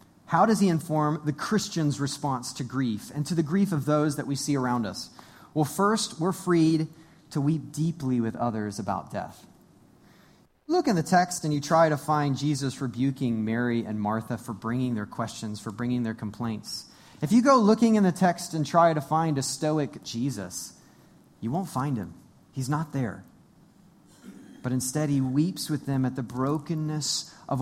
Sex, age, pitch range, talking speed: male, 30-49, 120-160 Hz, 185 wpm